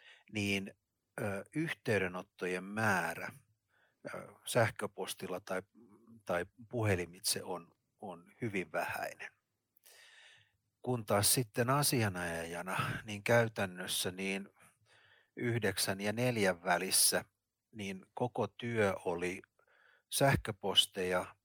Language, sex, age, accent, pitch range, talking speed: Finnish, male, 60-79, native, 90-115 Hz, 75 wpm